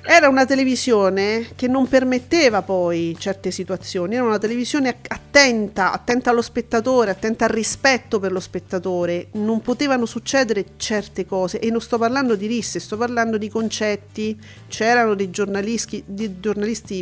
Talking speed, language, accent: 145 wpm, Italian, native